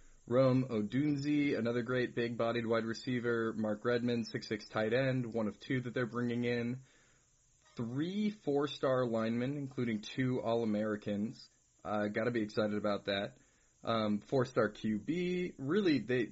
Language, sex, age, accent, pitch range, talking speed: English, male, 20-39, American, 105-125 Hz, 130 wpm